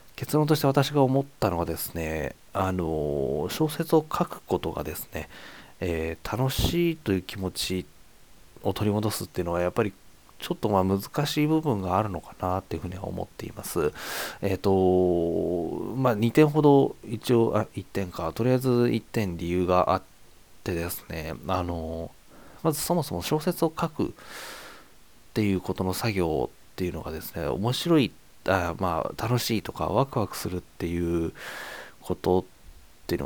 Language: Japanese